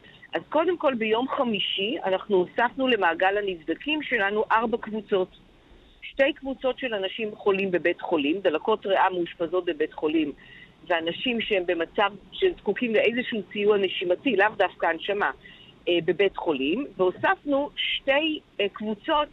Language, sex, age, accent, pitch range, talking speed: Hebrew, female, 50-69, native, 190-265 Hz, 125 wpm